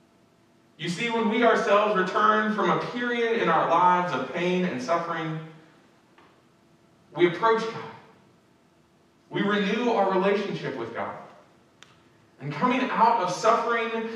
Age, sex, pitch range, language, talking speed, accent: 40-59, male, 130-215 Hz, English, 125 wpm, American